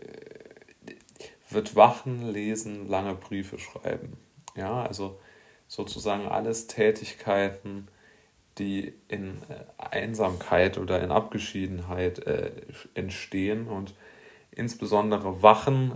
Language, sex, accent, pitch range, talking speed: German, male, German, 95-110 Hz, 85 wpm